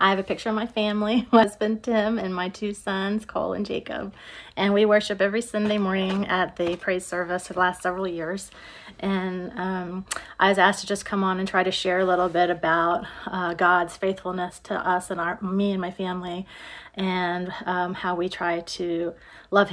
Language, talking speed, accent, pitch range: English, 200 wpm, American, 180-200 Hz